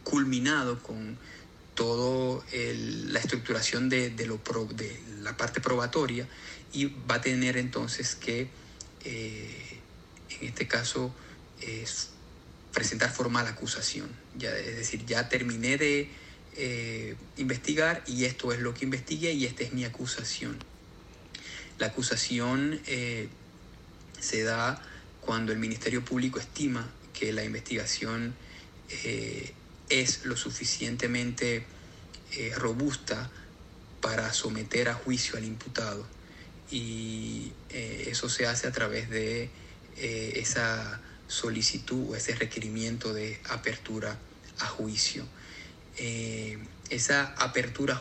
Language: Spanish